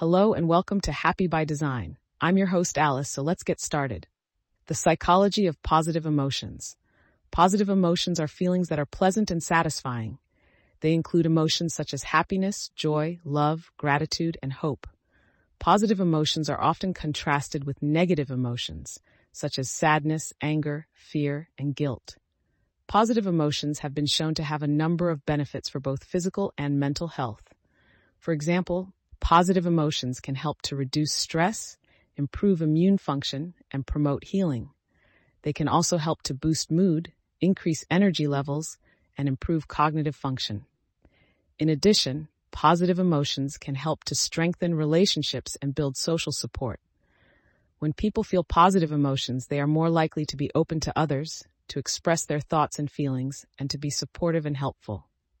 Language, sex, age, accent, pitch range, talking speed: English, female, 30-49, American, 140-170 Hz, 150 wpm